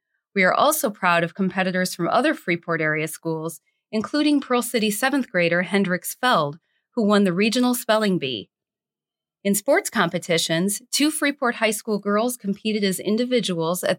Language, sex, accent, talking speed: English, female, American, 155 wpm